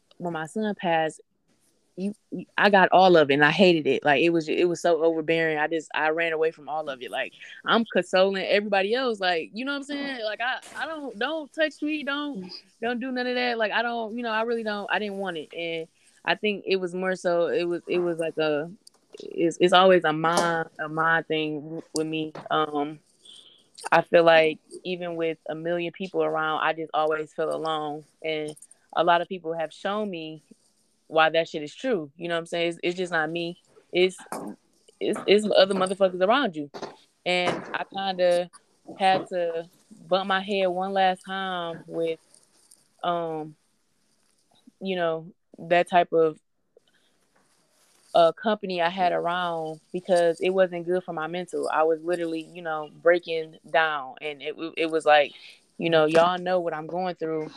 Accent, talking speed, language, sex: American, 195 wpm, English, female